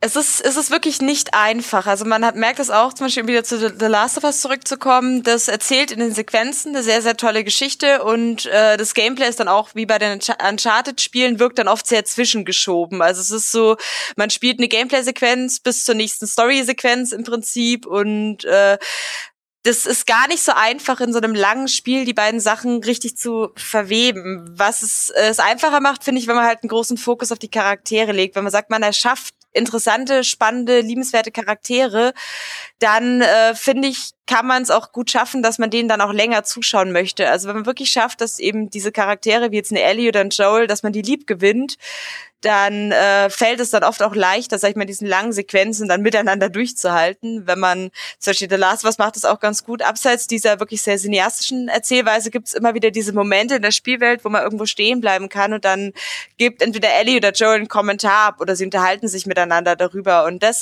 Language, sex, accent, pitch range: German, female, German, 210-245 Hz